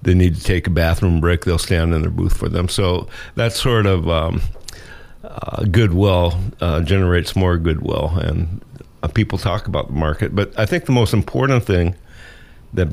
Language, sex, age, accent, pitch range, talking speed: English, male, 60-79, American, 85-110 Hz, 185 wpm